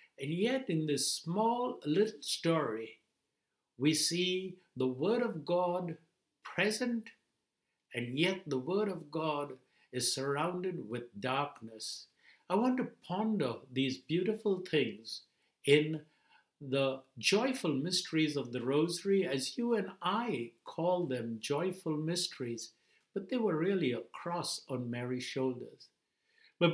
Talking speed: 125 wpm